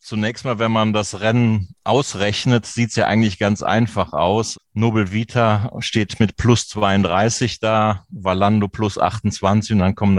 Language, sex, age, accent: German, male, 30-49, German